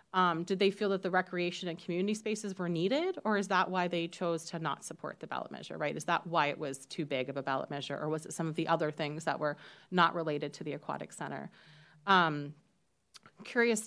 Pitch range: 160-195 Hz